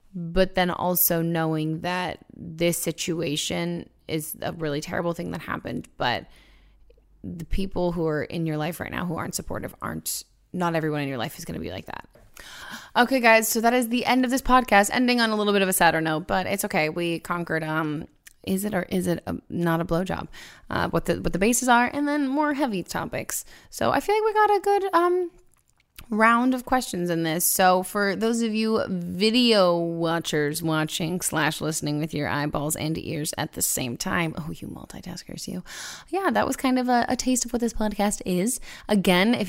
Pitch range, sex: 160-220 Hz, female